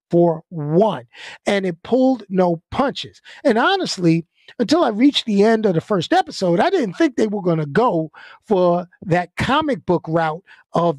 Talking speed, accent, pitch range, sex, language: 175 wpm, American, 175-270 Hz, male, English